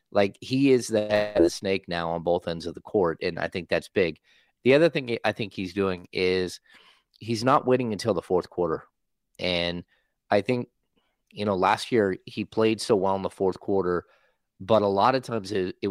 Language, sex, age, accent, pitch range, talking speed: English, male, 30-49, American, 90-115 Hz, 210 wpm